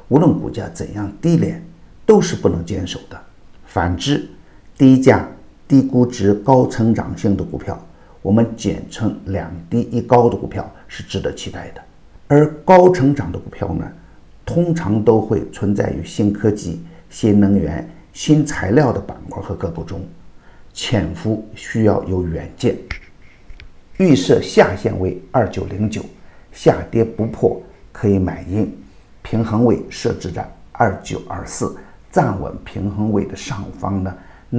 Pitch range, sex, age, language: 95-120 Hz, male, 50-69, Chinese